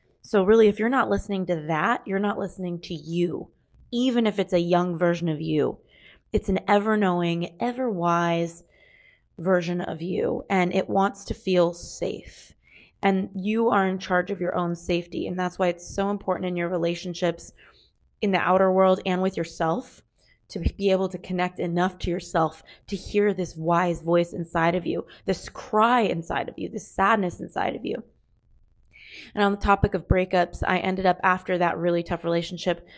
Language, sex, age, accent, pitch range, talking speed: English, female, 20-39, American, 170-195 Hz, 180 wpm